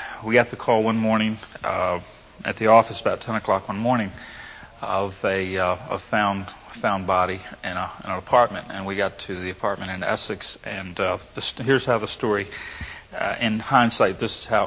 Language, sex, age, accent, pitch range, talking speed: English, male, 40-59, American, 100-115 Hz, 200 wpm